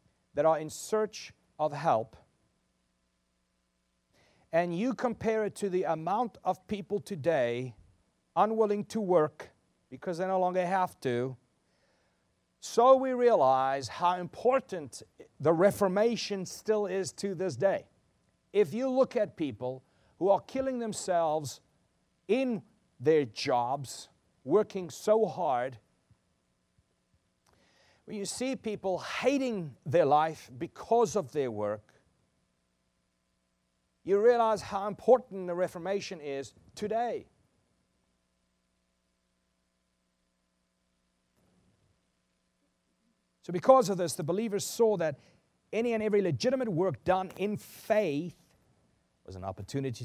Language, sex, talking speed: English, male, 110 wpm